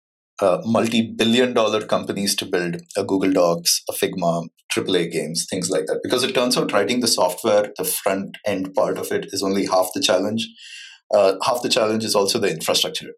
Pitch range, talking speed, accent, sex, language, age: 95-120 Hz, 195 wpm, Indian, male, English, 30-49